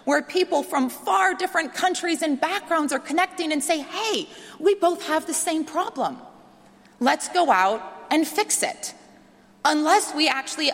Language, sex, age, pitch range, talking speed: English, female, 30-49, 200-310 Hz, 155 wpm